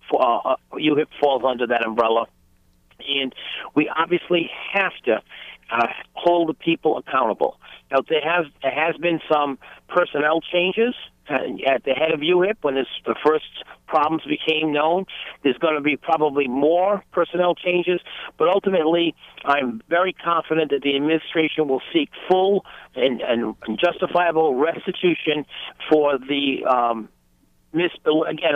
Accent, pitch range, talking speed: American, 140-170 Hz, 135 wpm